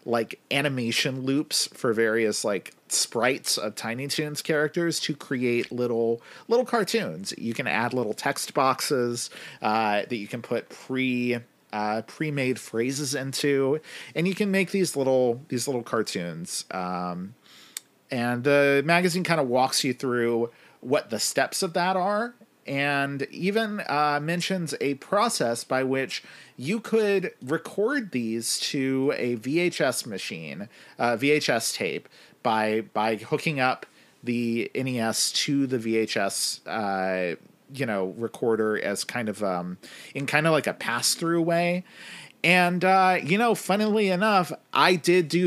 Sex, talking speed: male, 145 wpm